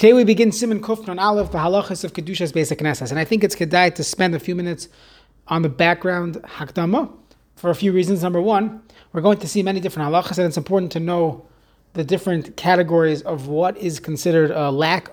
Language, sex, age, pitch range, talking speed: English, male, 30-49, 165-200 Hz, 215 wpm